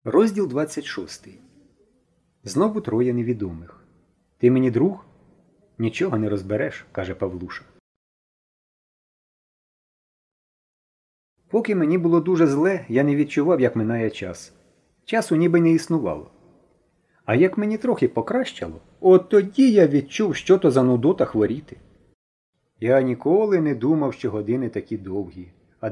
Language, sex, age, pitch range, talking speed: Ukrainian, male, 30-49, 110-180 Hz, 120 wpm